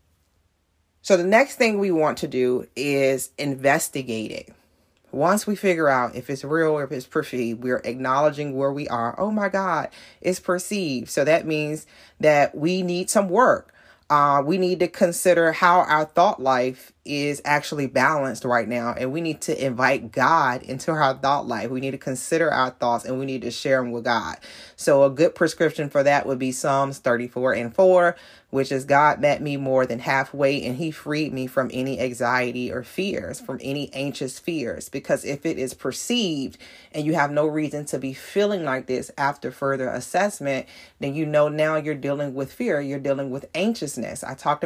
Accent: American